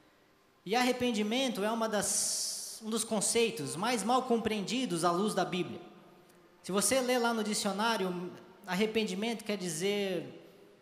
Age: 20-39